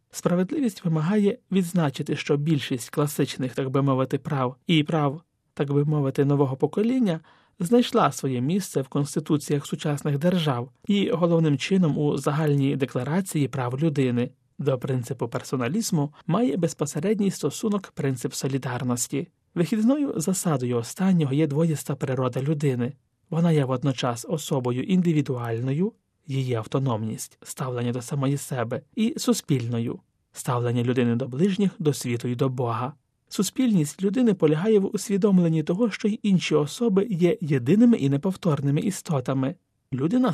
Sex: male